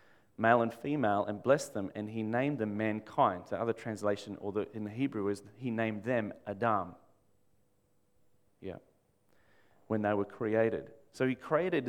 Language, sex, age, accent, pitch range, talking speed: English, male, 30-49, Australian, 100-115 Hz, 160 wpm